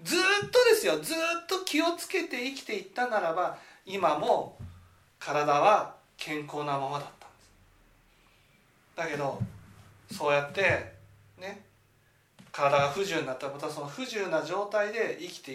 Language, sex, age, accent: Japanese, male, 40-59, native